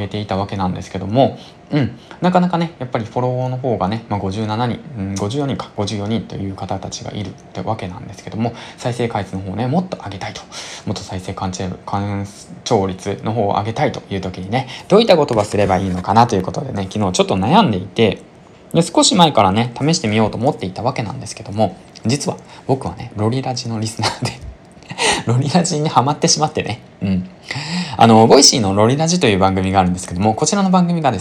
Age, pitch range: 20-39, 100-145 Hz